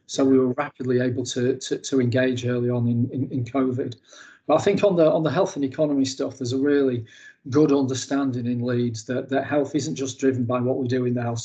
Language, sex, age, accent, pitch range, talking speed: English, male, 40-59, British, 125-135 Hz, 240 wpm